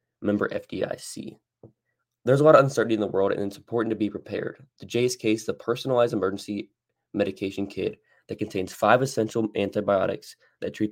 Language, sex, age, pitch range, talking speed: English, male, 20-39, 100-115 Hz, 175 wpm